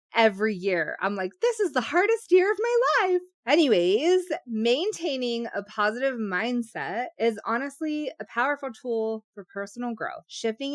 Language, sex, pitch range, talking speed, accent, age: English, female, 195-250 Hz, 145 wpm, American, 20-39